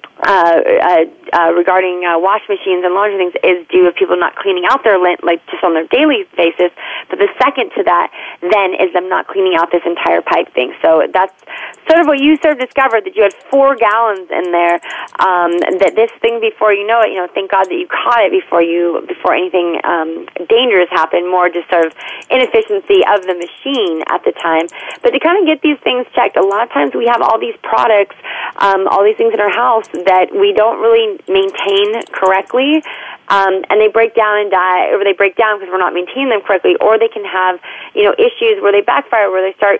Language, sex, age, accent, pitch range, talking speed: English, female, 30-49, American, 180-280 Hz, 230 wpm